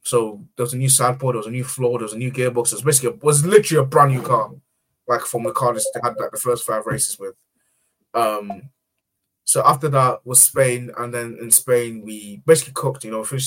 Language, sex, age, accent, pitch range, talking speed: English, male, 20-39, British, 120-140 Hz, 250 wpm